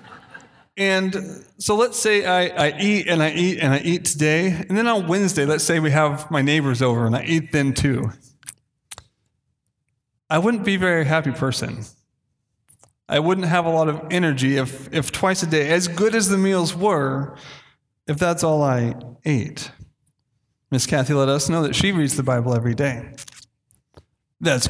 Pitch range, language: 130-170 Hz, English